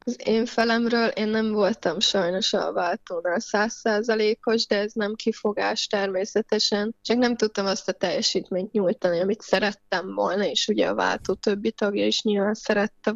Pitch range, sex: 205-230 Hz, female